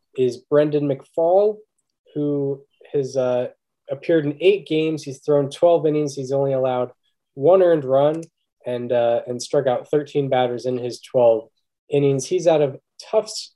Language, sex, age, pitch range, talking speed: English, male, 10-29, 125-155 Hz, 155 wpm